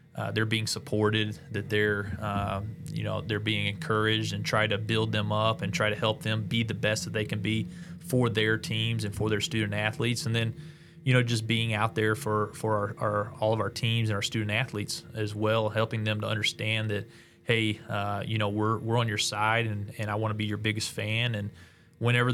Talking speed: 230 wpm